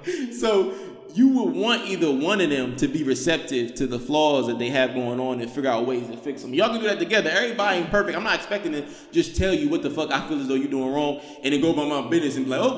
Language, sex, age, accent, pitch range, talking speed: English, male, 20-39, American, 130-200 Hz, 285 wpm